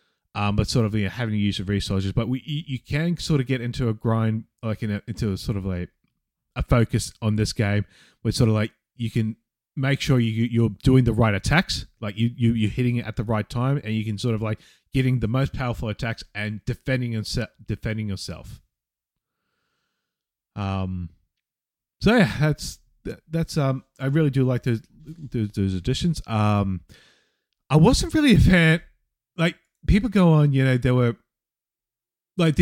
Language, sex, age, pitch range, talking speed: English, male, 20-39, 105-135 Hz, 190 wpm